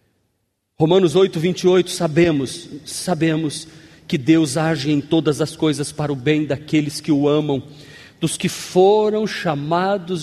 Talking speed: 135 wpm